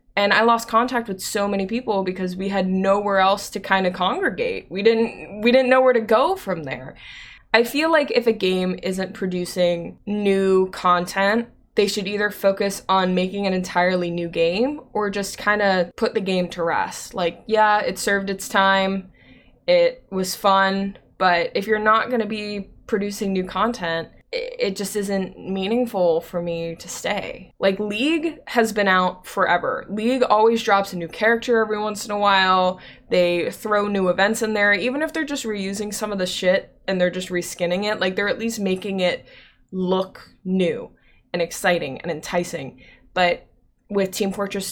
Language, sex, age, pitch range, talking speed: English, female, 20-39, 185-220 Hz, 185 wpm